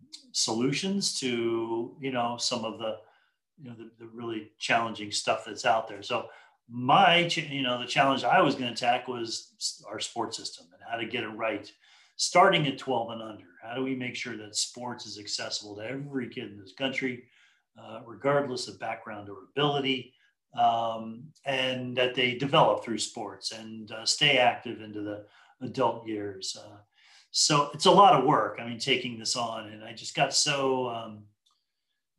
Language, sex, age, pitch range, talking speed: English, male, 40-59, 110-130 Hz, 180 wpm